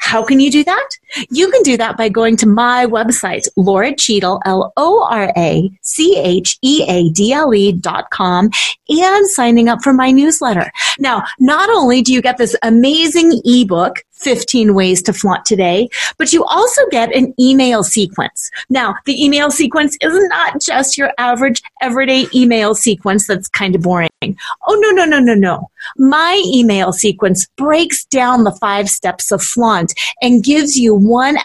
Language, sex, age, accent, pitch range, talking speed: English, female, 30-49, American, 200-285 Hz, 155 wpm